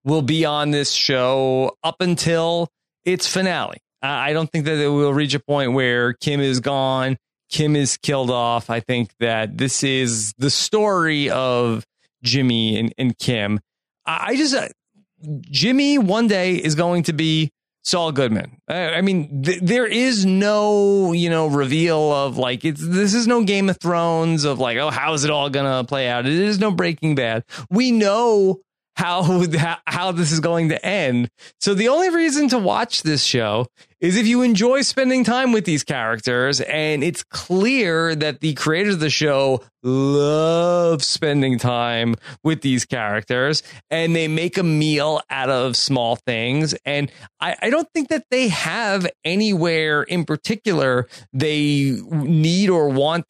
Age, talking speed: 30-49, 170 wpm